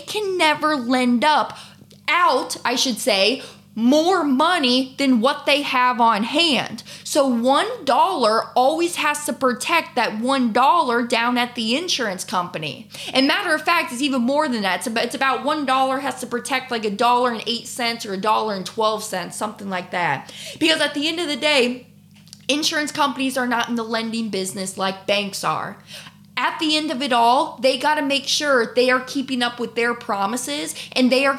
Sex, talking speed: female, 195 wpm